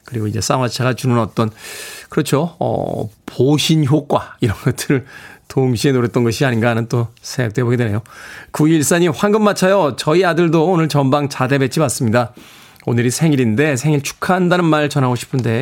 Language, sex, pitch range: Korean, male, 110-145 Hz